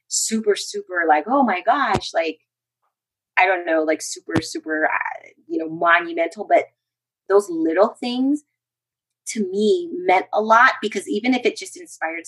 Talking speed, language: 155 wpm, English